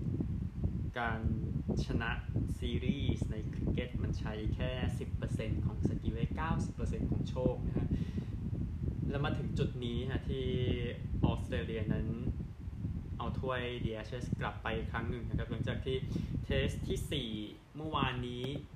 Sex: male